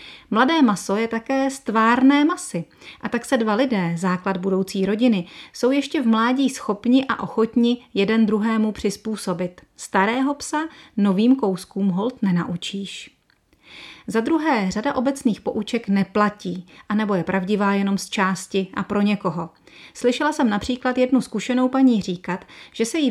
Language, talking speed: Czech, 145 wpm